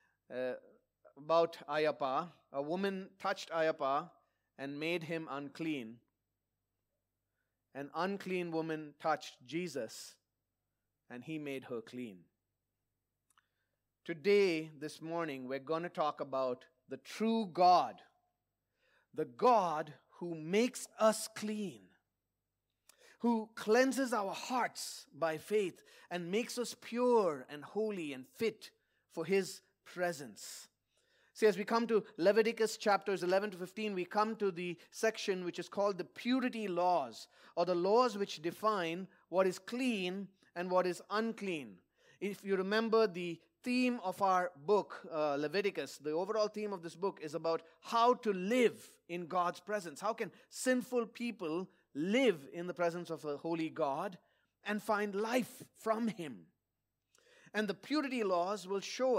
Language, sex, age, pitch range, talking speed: English, male, 30-49, 155-210 Hz, 135 wpm